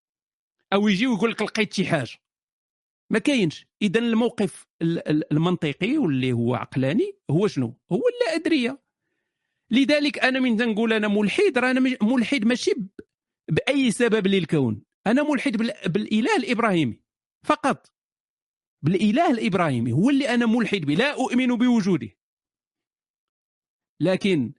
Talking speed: 115 wpm